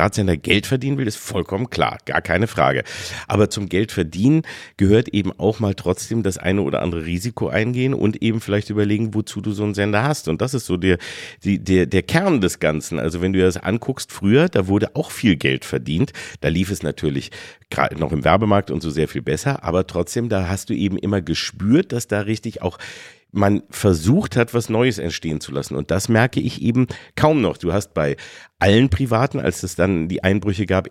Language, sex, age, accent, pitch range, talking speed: German, male, 50-69, German, 90-110 Hz, 210 wpm